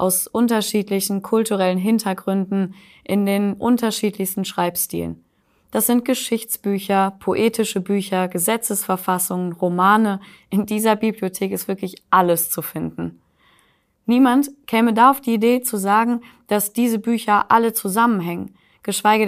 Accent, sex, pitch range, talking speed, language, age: German, female, 190-230 Hz, 115 wpm, German, 20-39